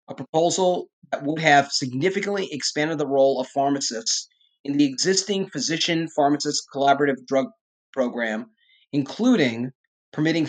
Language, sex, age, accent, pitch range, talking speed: English, male, 30-49, American, 135-190 Hz, 115 wpm